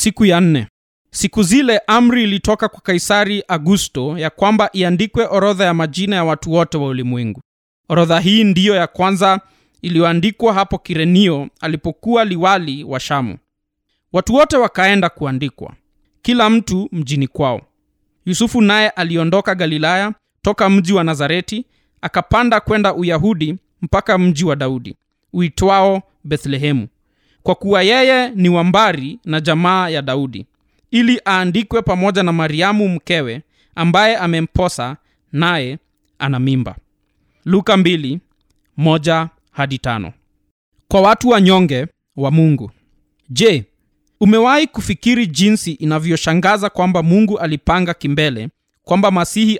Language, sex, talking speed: Swahili, male, 120 wpm